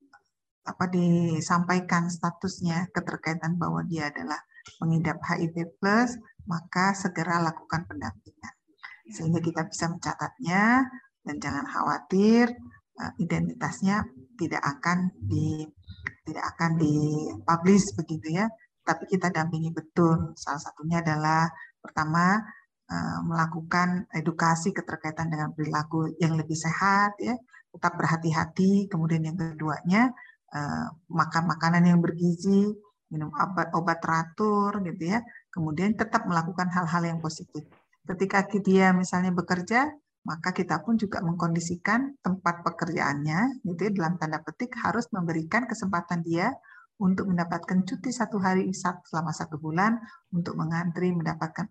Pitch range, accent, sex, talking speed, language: 160-195 Hz, native, female, 115 wpm, Indonesian